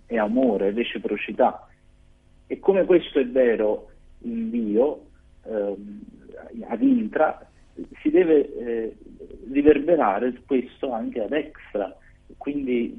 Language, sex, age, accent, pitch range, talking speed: Italian, male, 40-59, native, 100-130 Hz, 100 wpm